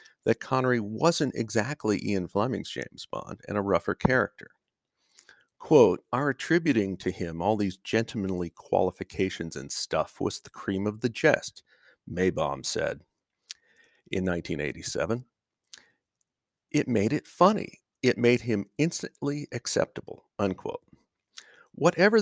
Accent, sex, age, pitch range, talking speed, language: American, male, 50-69, 95-115 Hz, 120 wpm, English